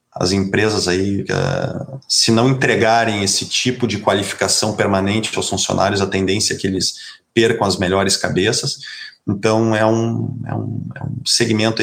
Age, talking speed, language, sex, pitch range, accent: 30-49, 135 wpm, Portuguese, male, 100-130 Hz, Brazilian